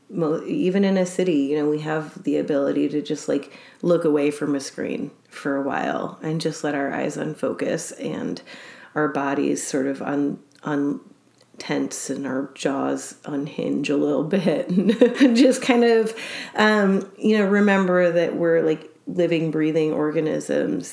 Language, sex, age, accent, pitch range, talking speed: English, female, 30-49, American, 145-185 Hz, 165 wpm